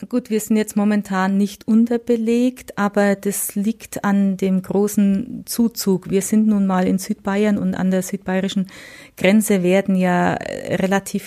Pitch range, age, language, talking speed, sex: 185-205 Hz, 30-49, German, 150 wpm, female